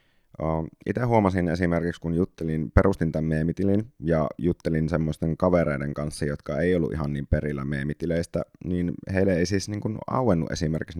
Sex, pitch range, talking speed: male, 75-85 Hz, 145 wpm